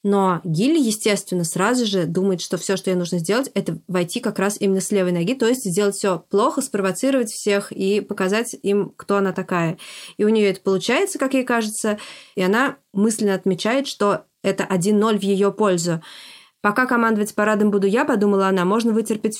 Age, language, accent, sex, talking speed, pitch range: 20-39, Russian, native, female, 185 wpm, 190-220 Hz